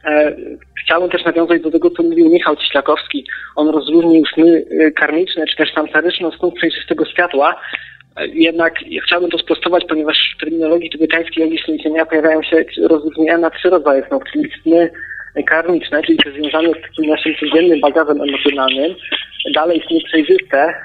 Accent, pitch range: native, 145-170 Hz